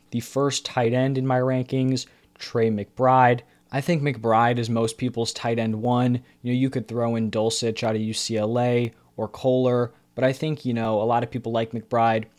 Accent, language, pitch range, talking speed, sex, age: American, English, 110-130 Hz, 200 wpm, male, 20-39